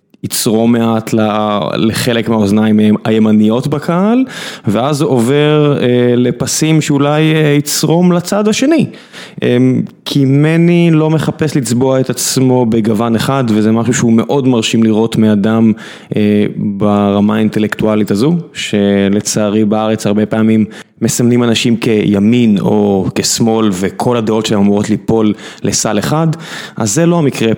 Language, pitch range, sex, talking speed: Hebrew, 110-140 Hz, male, 115 wpm